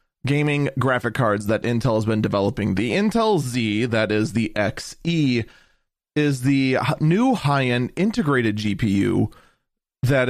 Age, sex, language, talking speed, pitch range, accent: 30-49, male, English, 130 wpm, 115-160 Hz, American